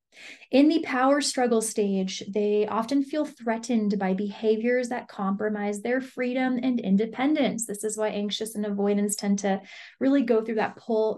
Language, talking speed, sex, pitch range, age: English, 160 wpm, female, 210-250 Hz, 20-39